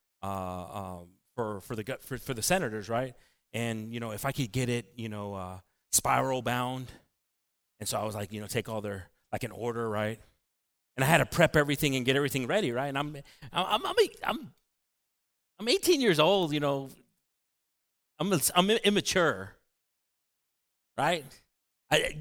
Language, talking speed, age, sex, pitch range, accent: English, 175 wpm, 30-49, male, 110-165 Hz, American